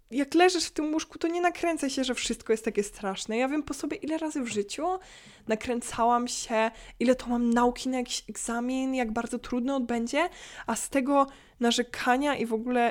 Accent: native